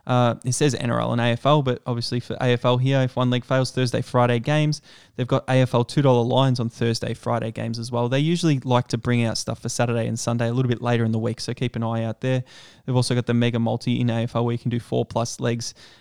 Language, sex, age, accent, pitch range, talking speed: English, male, 20-39, Australian, 120-135 Hz, 255 wpm